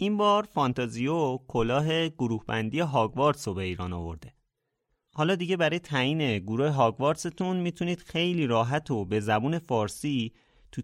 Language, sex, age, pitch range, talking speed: Persian, male, 30-49, 110-155 Hz, 145 wpm